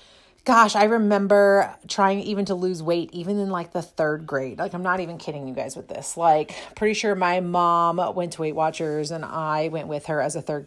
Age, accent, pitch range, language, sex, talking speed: 30-49, American, 160-205 Hz, English, female, 225 wpm